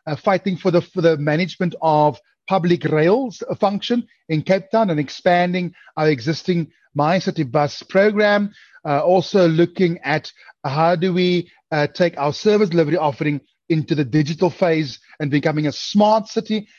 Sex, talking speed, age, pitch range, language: male, 155 wpm, 30-49, 155-185 Hz, English